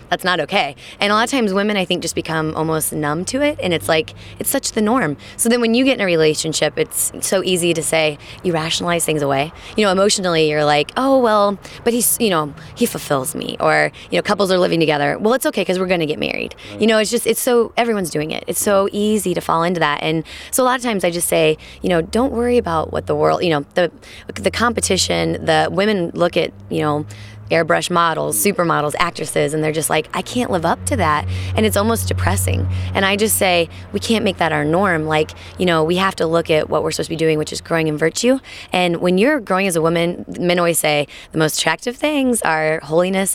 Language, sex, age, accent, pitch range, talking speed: English, female, 20-39, American, 155-200 Hz, 245 wpm